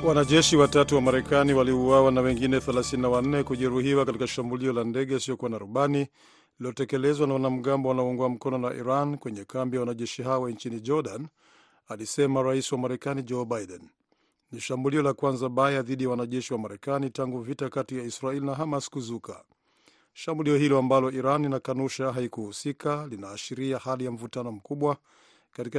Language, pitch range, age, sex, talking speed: Swahili, 125-145 Hz, 50-69, male, 155 wpm